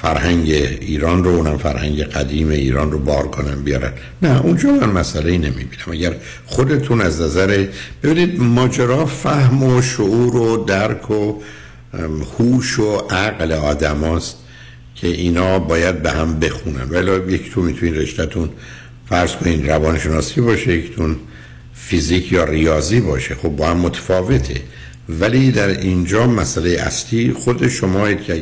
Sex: male